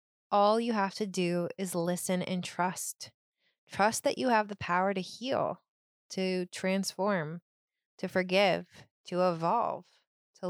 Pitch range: 175-200 Hz